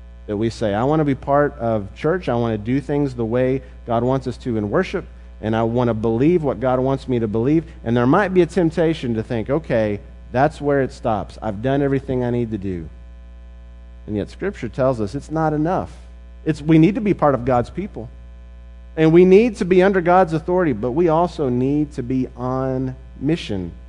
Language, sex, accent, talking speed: English, male, American, 220 wpm